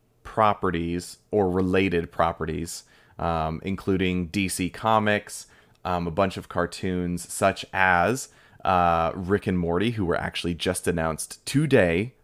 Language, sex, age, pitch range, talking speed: English, male, 30-49, 85-100 Hz, 125 wpm